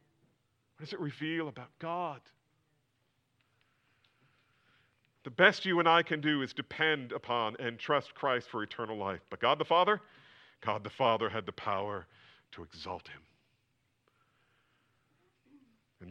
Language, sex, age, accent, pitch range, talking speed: English, male, 40-59, American, 115-135 Hz, 135 wpm